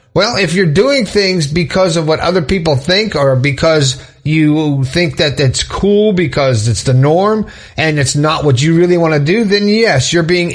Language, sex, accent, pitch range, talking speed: English, male, American, 140-180 Hz, 200 wpm